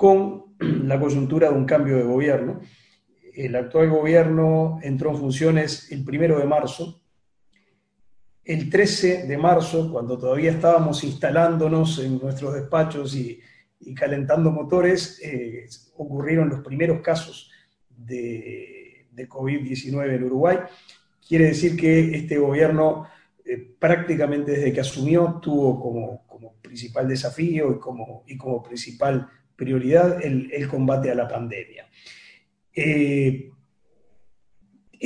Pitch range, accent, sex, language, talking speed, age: 135-170 Hz, Argentinian, male, English, 125 wpm, 40-59